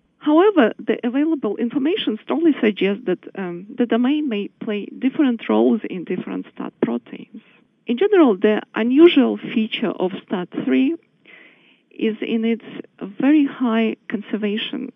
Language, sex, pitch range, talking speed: English, female, 210-265 Hz, 130 wpm